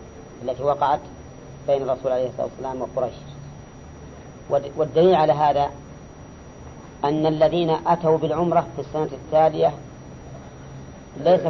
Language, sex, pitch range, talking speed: English, female, 130-160 Hz, 95 wpm